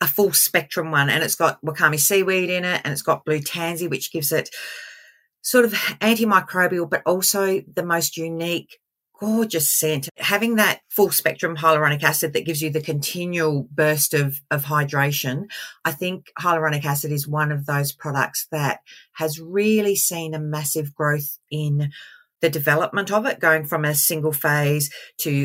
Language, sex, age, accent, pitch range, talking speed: English, female, 40-59, Australian, 150-195 Hz, 165 wpm